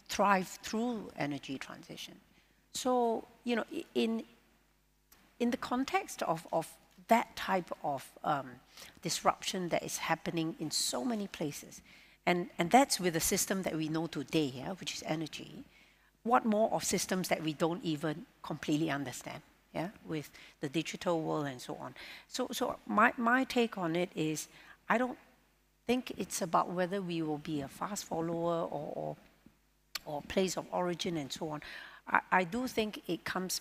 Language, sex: English, female